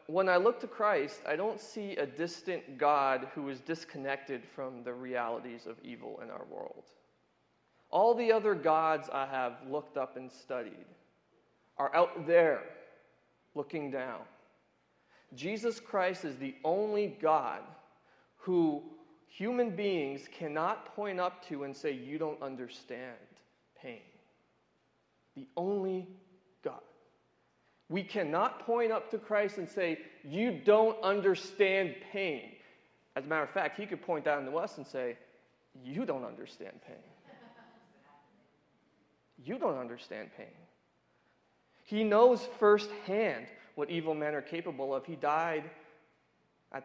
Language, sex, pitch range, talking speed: English, male, 145-205 Hz, 135 wpm